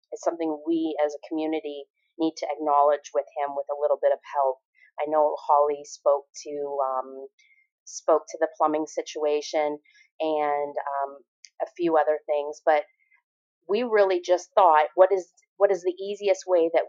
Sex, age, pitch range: female, 30-49, 150-185 Hz